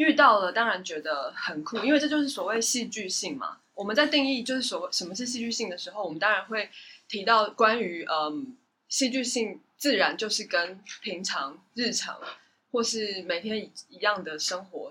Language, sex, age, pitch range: Chinese, female, 20-39, 210-285 Hz